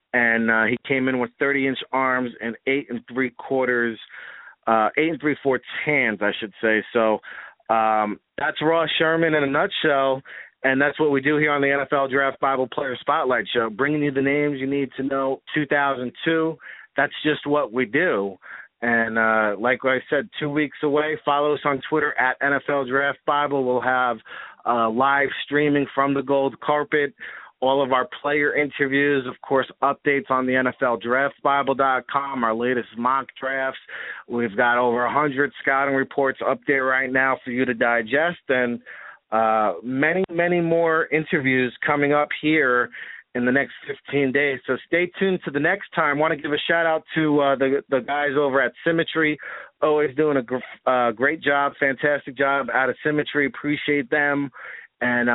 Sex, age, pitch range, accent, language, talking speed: male, 30-49, 125-150 Hz, American, English, 180 wpm